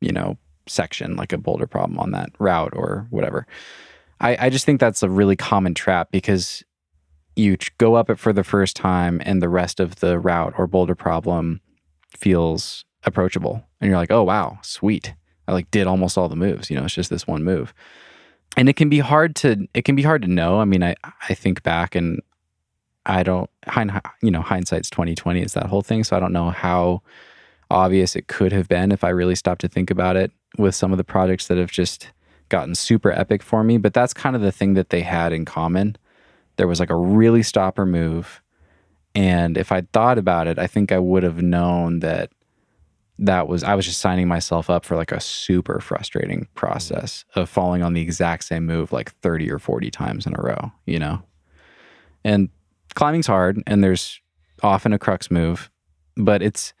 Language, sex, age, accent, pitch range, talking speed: English, male, 20-39, American, 85-100 Hz, 205 wpm